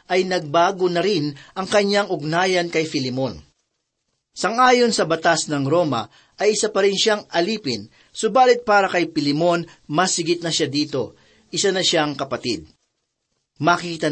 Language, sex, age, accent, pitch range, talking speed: Filipino, male, 40-59, native, 150-195 Hz, 140 wpm